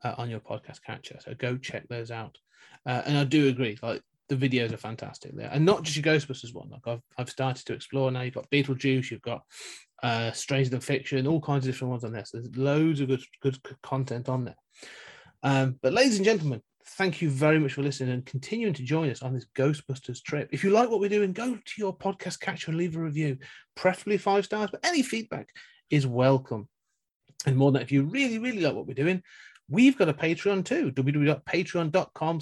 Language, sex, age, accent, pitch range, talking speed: English, male, 30-49, British, 135-170 Hz, 220 wpm